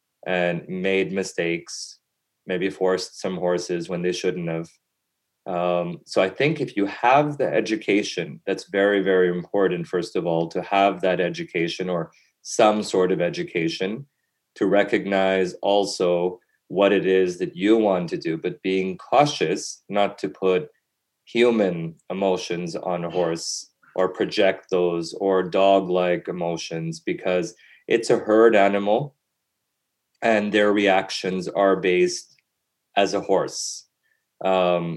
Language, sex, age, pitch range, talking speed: English, male, 30-49, 90-100 Hz, 135 wpm